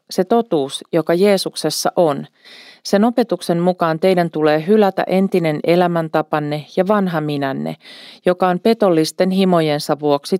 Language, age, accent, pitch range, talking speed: Finnish, 40-59, native, 155-195 Hz, 120 wpm